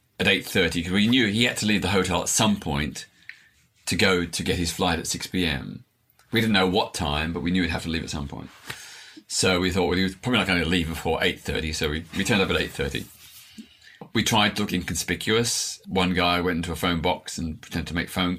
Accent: British